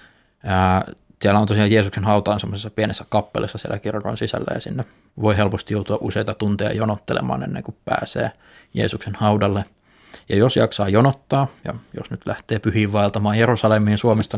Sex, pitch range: male, 100-110 Hz